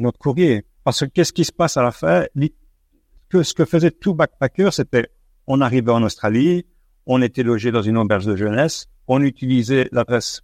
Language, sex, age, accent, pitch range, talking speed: French, male, 50-69, French, 110-140 Hz, 190 wpm